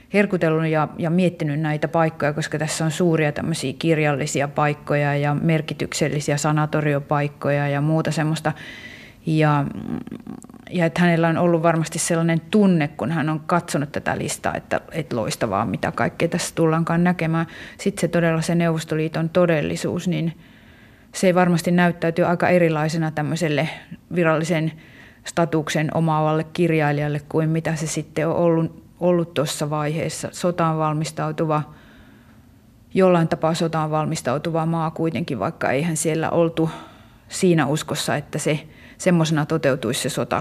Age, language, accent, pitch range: 30-49, Finnish, native, 150-170 Hz